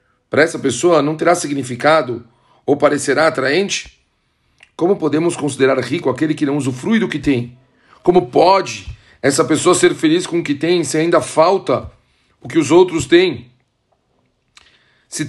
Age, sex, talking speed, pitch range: 40-59, male, 155 wpm, 125-165 Hz